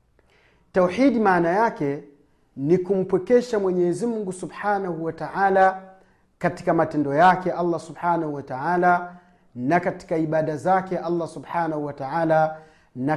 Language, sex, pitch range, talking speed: Swahili, male, 155-210 Hz, 120 wpm